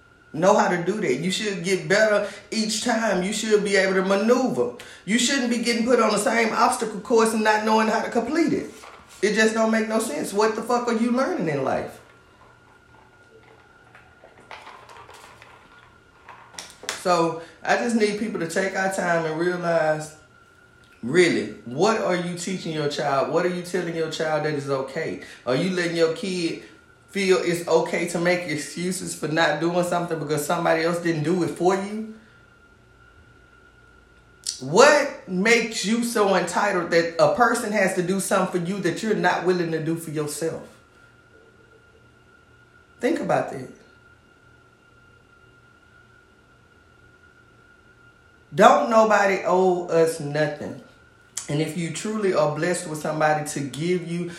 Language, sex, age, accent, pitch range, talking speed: English, male, 30-49, American, 165-215 Hz, 155 wpm